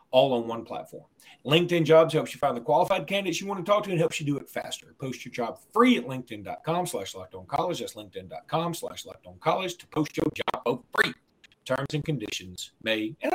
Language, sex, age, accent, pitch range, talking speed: English, male, 40-59, American, 125-175 Hz, 210 wpm